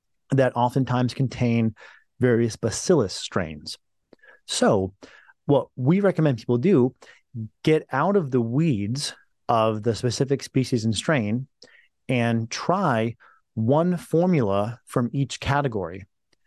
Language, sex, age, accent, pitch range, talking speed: English, male, 30-49, American, 115-145 Hz, 110 wpm